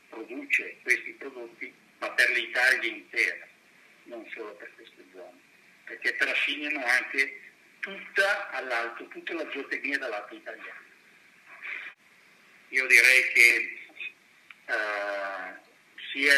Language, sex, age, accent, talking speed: Italian, male, 50-69, native, 95 wpm